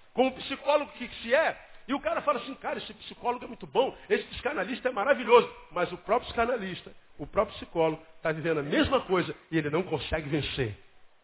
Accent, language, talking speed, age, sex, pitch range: Brazilian, Portuguese, 200 wpm, 50-69, male, 170-245 Hz